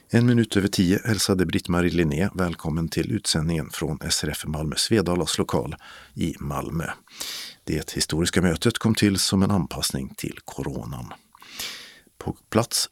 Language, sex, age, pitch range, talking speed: Swedish, male, 50-69, 80-105 Hz, 135 wpm